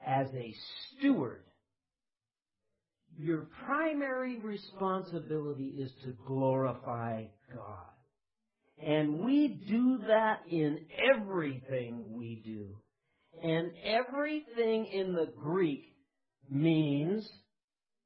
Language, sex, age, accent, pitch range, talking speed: English, male, 50-69, American, 120-195 Hz, 80 wpm